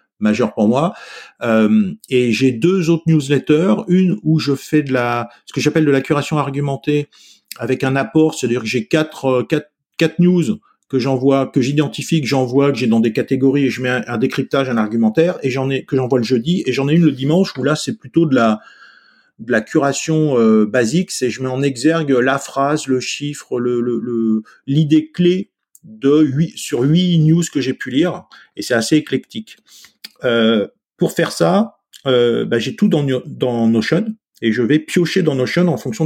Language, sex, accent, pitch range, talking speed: French, male, French, 130-165 Hz, 200 wpm